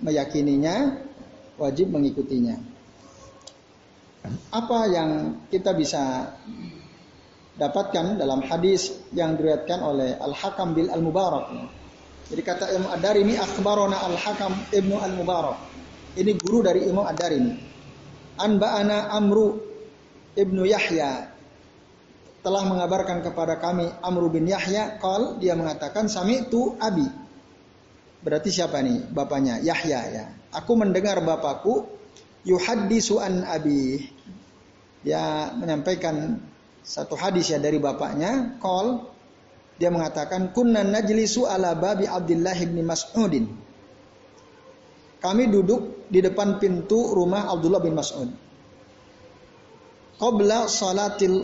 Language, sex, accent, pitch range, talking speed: Indonesian, male, native, 165-210 Hz, 100 wpm